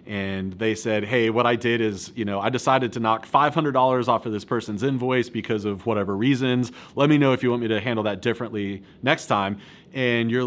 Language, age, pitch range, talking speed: English, 30-49, 110-135 Hz, 225 wpm